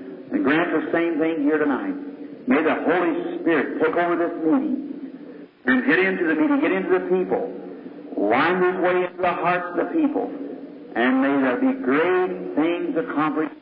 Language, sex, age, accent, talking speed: English, male, 50-69, American, 175 wpm